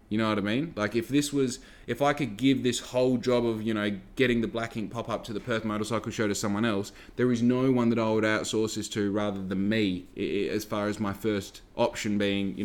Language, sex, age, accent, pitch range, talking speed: English, male, 20-39, Australian, 100-125 Hz, 250 wpm